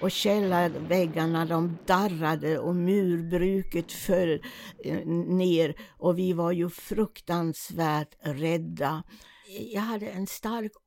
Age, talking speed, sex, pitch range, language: 60-79, 100 wpm, female, 175-210 Hz, Swedish